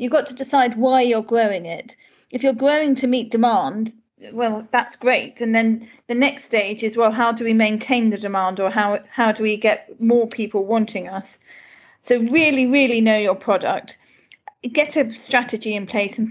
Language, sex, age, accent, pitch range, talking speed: English, female, 40-59, British, 200-250 Hz, 190 wpm